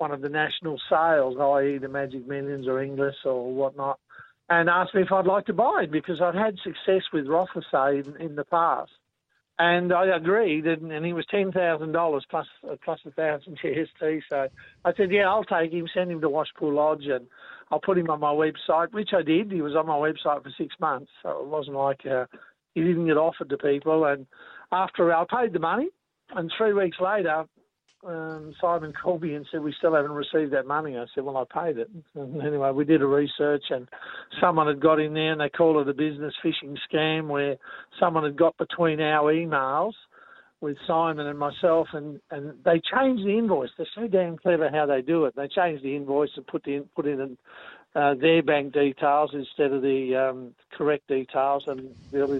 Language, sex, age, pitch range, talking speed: English, male, 50-69, 140-170 Hz, 205 wpm